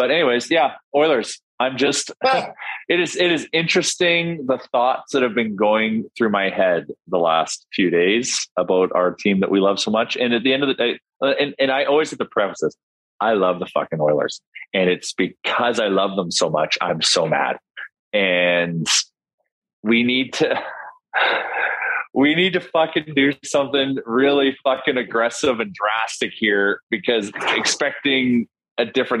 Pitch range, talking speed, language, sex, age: 100-135 Hz, 170 wpm, English, male, 30-49